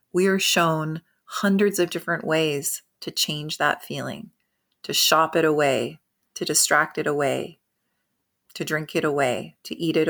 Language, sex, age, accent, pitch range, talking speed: English, female, 30-49, American, 150-185 Hz, 155 wpm